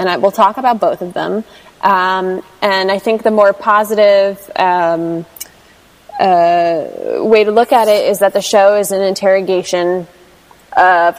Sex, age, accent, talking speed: female, 20-39, American, 155 wpm